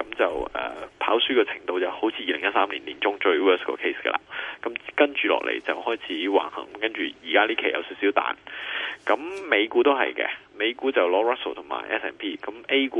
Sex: male